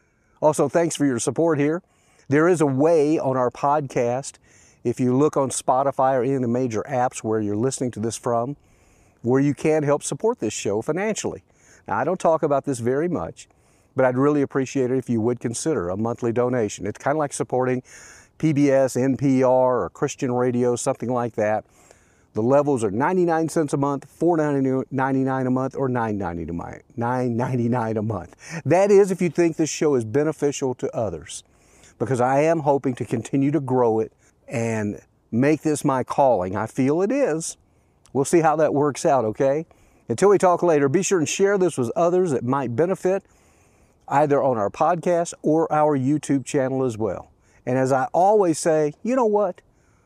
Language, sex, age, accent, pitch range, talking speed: English, male, 50-69, American, 120-155 Hz, 180 wpm